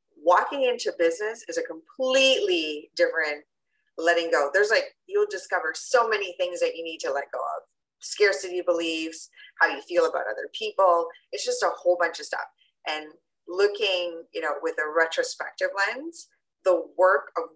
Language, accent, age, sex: English, American, 30-49, female